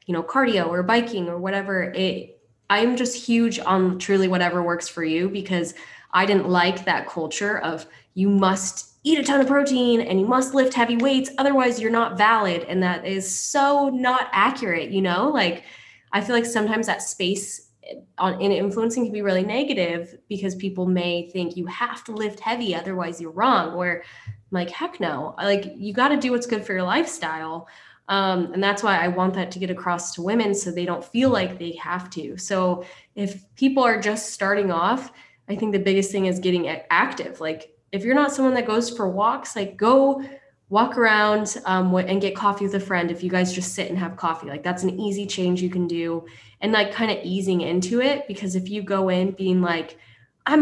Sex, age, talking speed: female, 20-39, 210 wpm